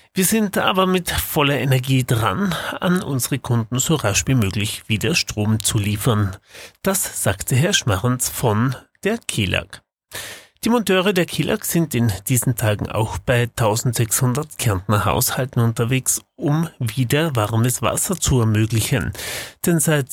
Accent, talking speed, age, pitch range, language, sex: German, 140 wpm, 30-49, 115-155 Hz, German, male